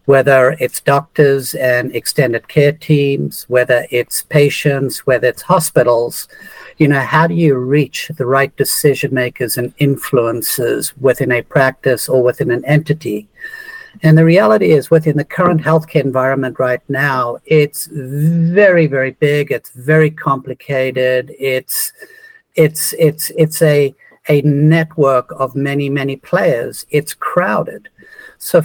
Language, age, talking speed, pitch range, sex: English, 50-69, 135 wpm, 135-170 Hz, male